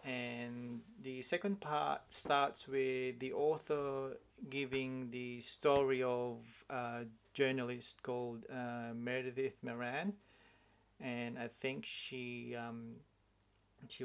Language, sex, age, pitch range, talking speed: English, male, 30-49, 115-130 Hz, 105 wpm